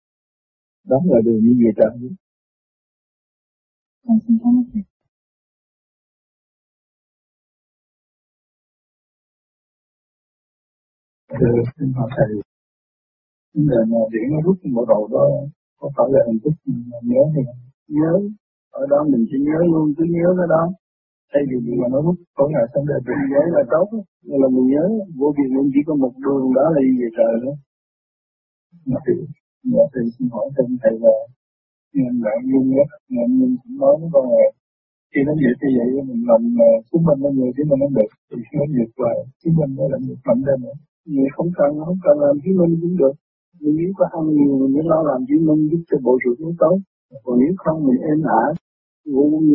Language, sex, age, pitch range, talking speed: Vietnamese, male, 50-69, 130-190 Hz, 115 wpm